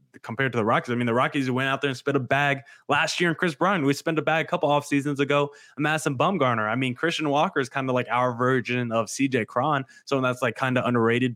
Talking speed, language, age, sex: 275 wpm, English, 20-39, male